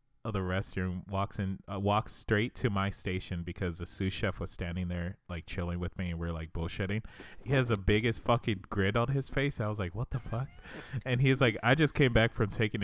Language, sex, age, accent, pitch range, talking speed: English, male, 20-39, American, 100-155 Hz, 235 wpm